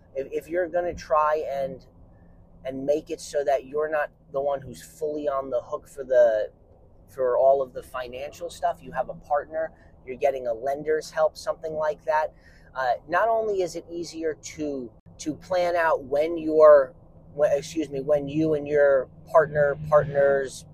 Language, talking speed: English, 175 wpm